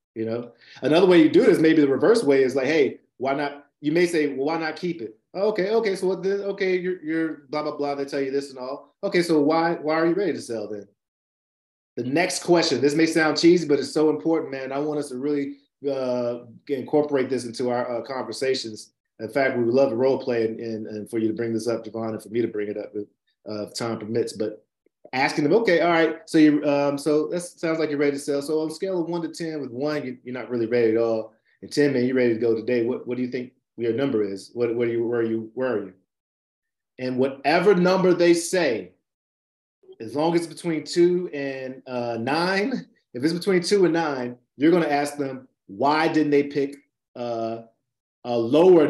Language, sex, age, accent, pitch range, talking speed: English, male, 30-49, American, 120-160 Hz, 240 wpm